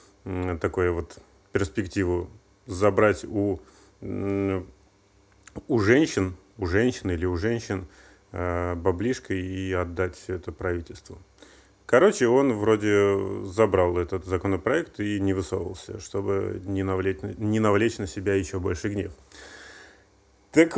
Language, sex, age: Russian, male, 30-49